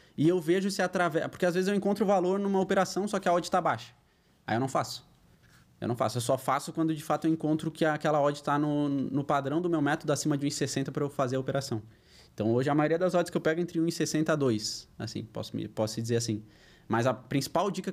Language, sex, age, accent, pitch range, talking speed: Portuguese, male, 20-39, Brazilian, 130-180 Hz, 250 wpm